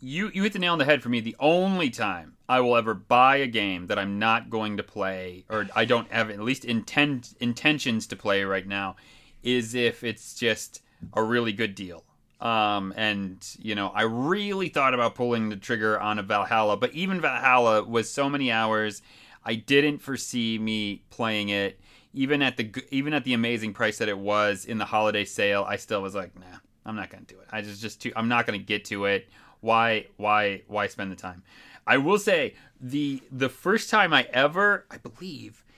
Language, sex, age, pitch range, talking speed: English, male, 30-49, 110-155 Hz, 210 wpm